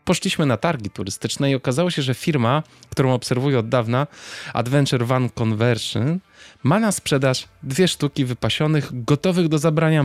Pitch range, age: 120-150 Hz, 20-39